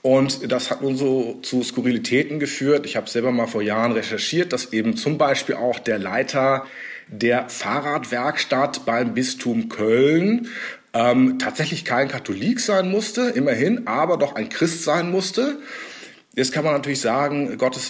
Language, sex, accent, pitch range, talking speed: German, male, German, 120-155 Hz, 155 wpm